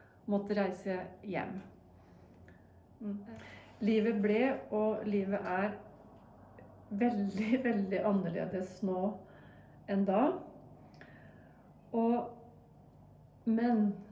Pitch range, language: 185-220 Hz, English